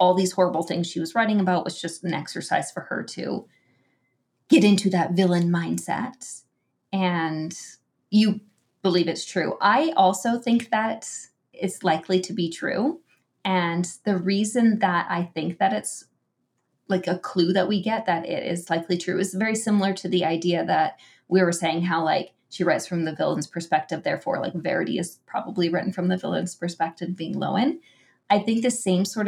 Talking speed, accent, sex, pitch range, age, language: 180 wpm, American, female, 170-195 Hz, 20-39, English